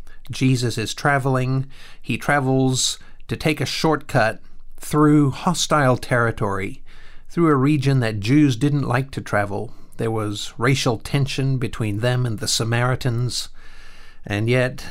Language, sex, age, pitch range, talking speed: English, male, 50-69, 105-145 Hz, 130 wpm